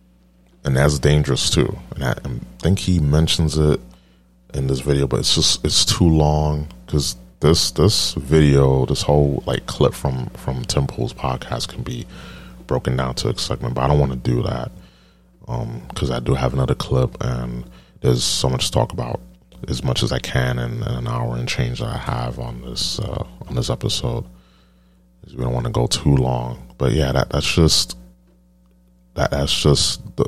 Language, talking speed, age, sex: English, 190 wpm, 30-49, male